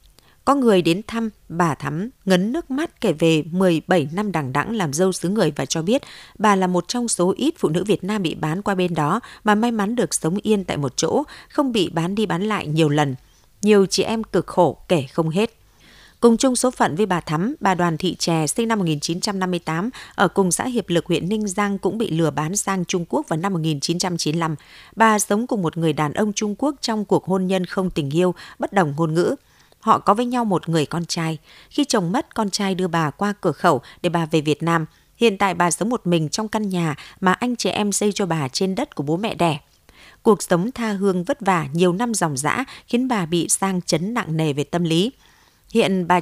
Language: Vietnamese